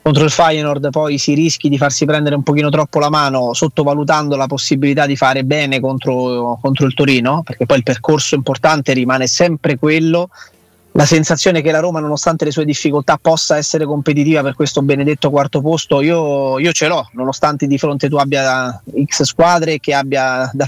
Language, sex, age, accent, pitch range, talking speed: Italian, male, 30-49, native, 140-160 Hz, 185 wpm